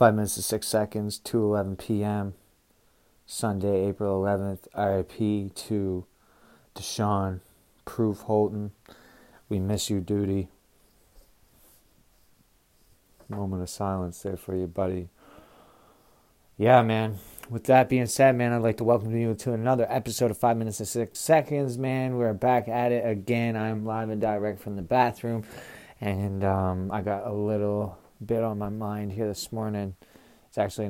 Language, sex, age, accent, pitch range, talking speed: English, male, 30-49, American, 95-115 Hz, 145 wpm